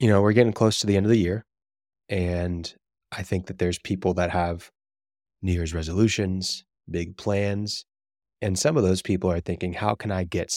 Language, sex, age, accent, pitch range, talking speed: English, male, 20-39, American, 85-100 Hz, 200 wpm